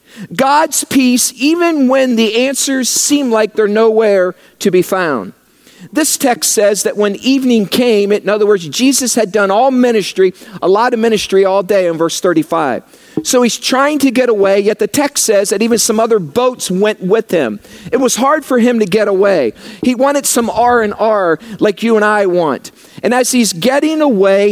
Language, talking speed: English, 190 wpm